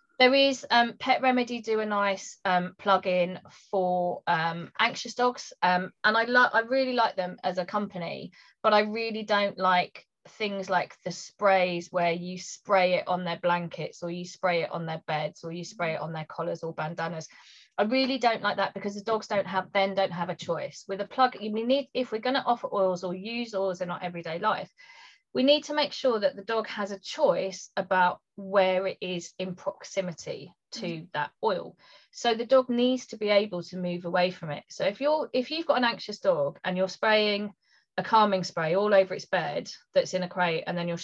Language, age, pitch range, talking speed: English, 20-39, 180-230 Hz, 215 wpm